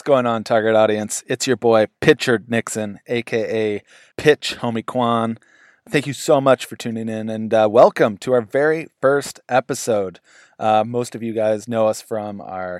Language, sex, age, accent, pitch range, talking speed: English, male, 20-39, American, 105-120 Hz, 175 wpm